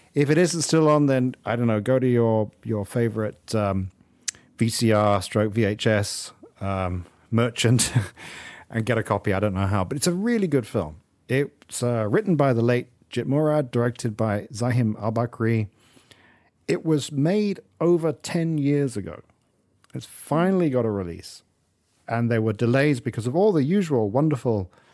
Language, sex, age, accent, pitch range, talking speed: English, male, 40-59, British, 105-140 Hz, 165 wpm